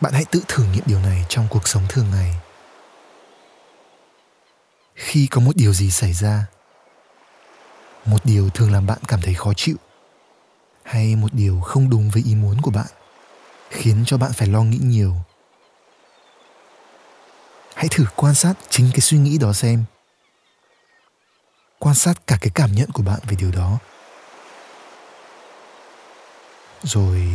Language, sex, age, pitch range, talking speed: Vietnamese, male, 20-39, 100-130 Hz, 145 wpm